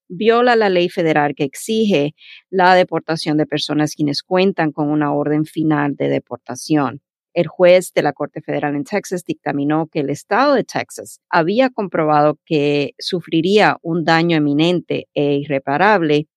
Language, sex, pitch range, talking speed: Spanish, female, 145-180 Hz, 150 wpm